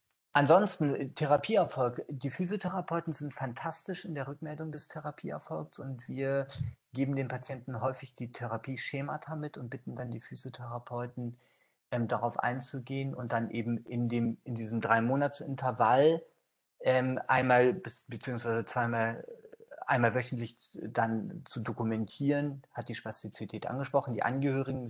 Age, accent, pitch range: 40-59, German, 120-140 Hz